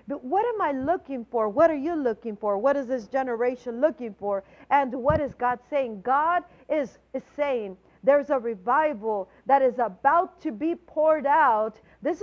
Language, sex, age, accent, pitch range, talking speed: English, female, 50-69, American, 260-335 Hz, 180 wpm